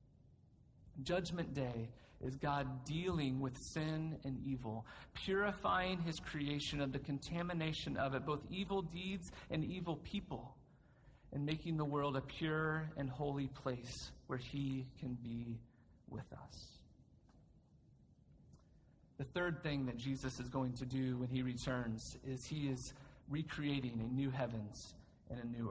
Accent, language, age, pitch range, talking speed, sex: American, English, 40-59, 125-150 Hz, 140 wpm, male